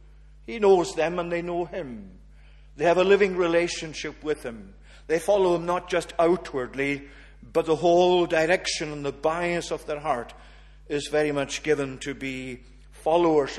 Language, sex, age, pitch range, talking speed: English, male, 50-69, 135-160 Hz, 165 wpm